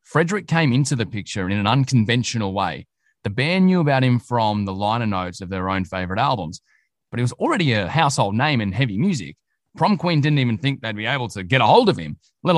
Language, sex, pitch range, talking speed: English, male, 100-130 Hz, 230 wpm